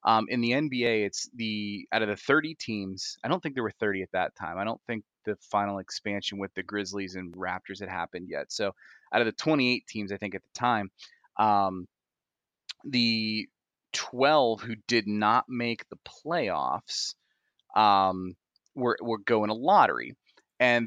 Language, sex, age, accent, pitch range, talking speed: English, male, 30-49, American, 100-120 Hz, 175 wpm